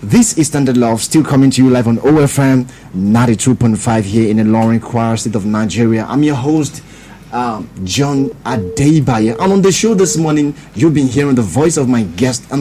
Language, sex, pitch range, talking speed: English, male, 115-145 Hz, 200 wpm